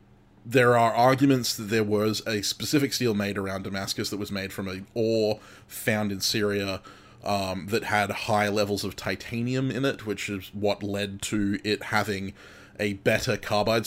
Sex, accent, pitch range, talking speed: male, Australian, 100-115 Hz, 175 wpm